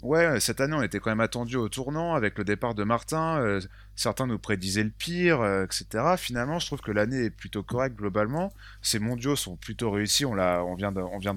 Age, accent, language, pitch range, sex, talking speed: 20-39, French, French, 100-125 Hz, male, 220 wpm